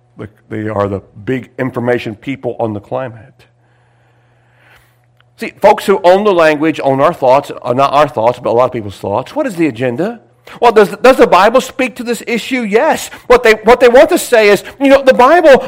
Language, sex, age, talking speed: English, male, 50-69, 200 wpm